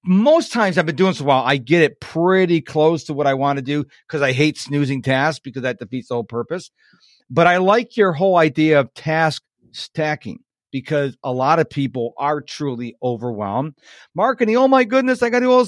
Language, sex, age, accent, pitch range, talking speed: English, male, 40-59, American, 140-185 Hz, 210 wpm